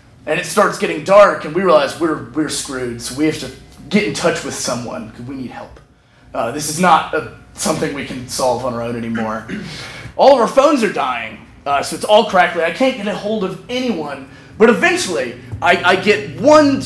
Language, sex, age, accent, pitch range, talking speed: English, male, 30-49, American, 145-230 Hz, 215 wpm